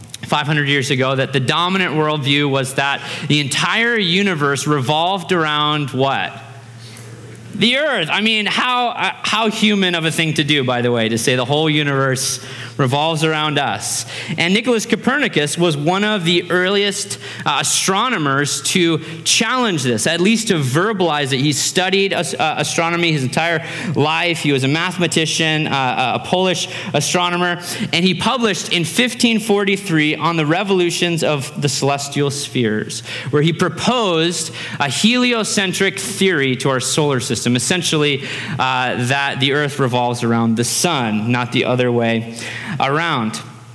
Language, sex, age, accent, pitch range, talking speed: English, male, 30-49, American, 135-185 Hz, 150 wpm